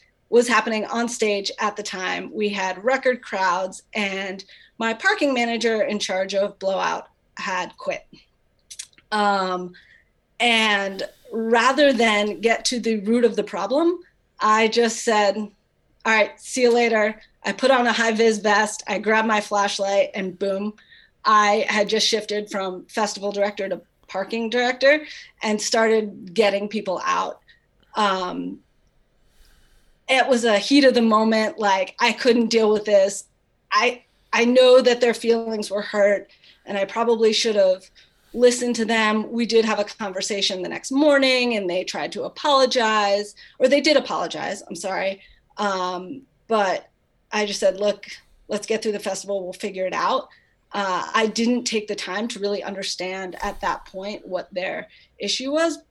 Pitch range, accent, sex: 200-235 Hz, American, female